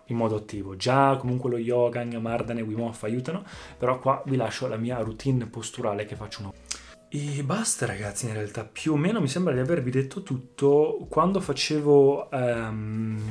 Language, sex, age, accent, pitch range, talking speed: Italian, male, 20-39, native, 115-135 Hz, 175 wpm